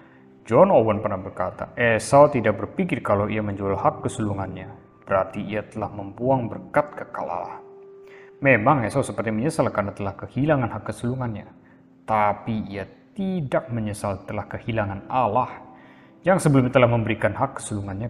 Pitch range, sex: 100-130 Hz, male